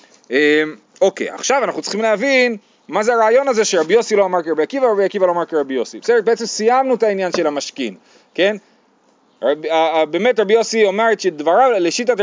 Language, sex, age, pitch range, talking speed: Hebrew, male, 30-49, 165-240 Hz, 180 wpm